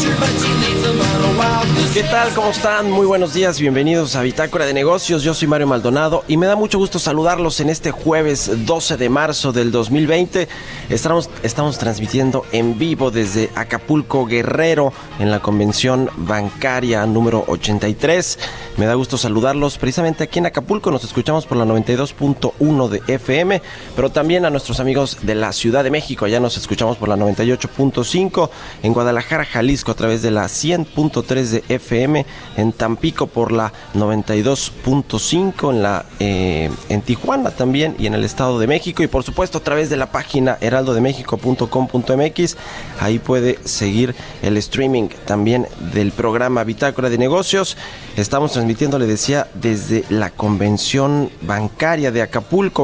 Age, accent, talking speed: 30-49, Mexican, 150 wpm